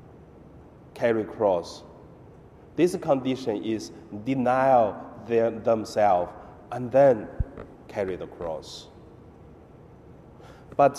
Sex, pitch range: male, 110-145 Hz